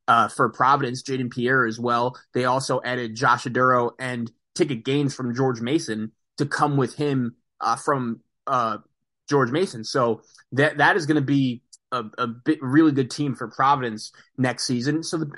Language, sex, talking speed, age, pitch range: English, male, 180 wpm, 20-39, 120-150 Hz